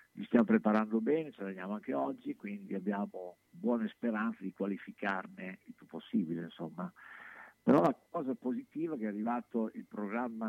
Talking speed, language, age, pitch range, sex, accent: 165 wpm, Italian, 50-69, 95-125 Hz, male, native